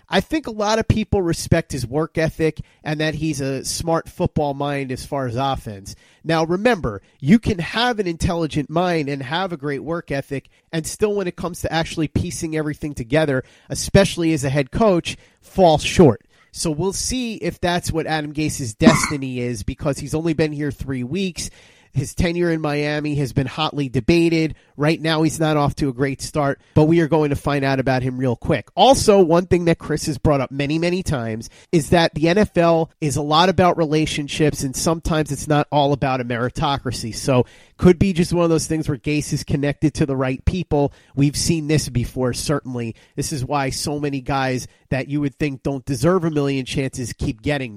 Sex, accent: male, American